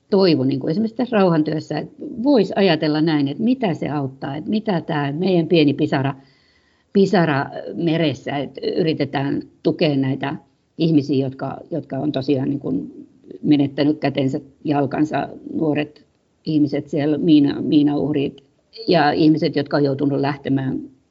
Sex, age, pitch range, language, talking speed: female, 50-69, 145-200 Hz, Finnish, 130 wpm